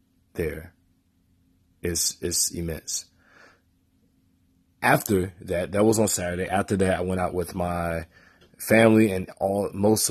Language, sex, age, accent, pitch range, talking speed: English, male, 20-39, American, 85-95 Hz, 125 wpm